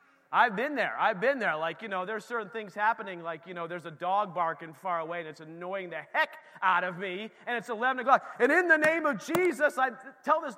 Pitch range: 200-295 Hz